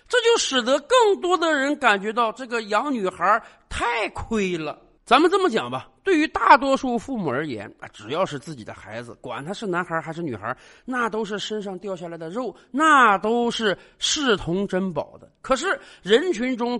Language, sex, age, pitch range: Chinese, male, 50-69, 180-290 Hz